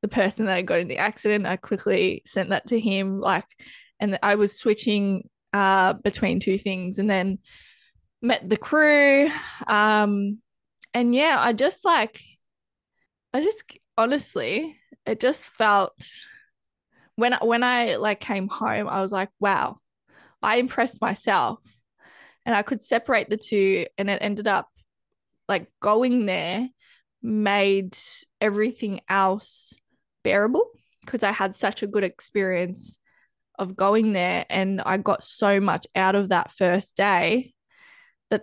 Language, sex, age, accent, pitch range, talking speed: English, female, 20-39, Australian, 195-240 Hz, 140 wpm